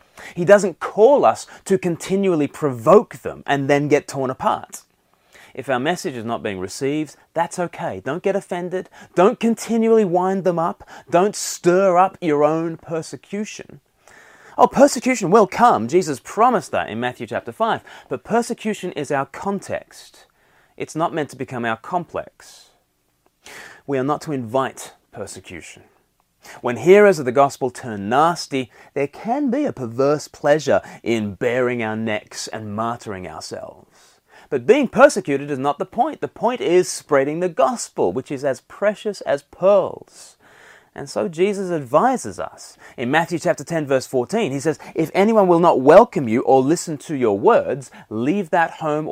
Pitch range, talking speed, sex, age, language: 135-195 Hz, 160 wpm, male, 30-49, English